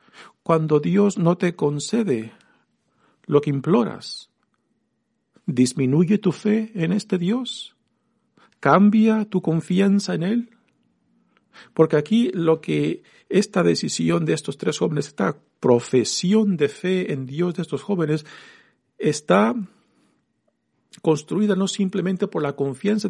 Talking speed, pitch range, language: 115 wpm, 130-200 Hz, Spanish